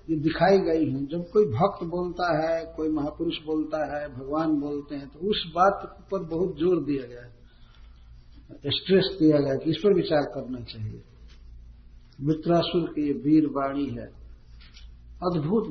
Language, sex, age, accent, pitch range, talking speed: Hindi, male, 50-69, native, 120-165 Hz, 150 wpm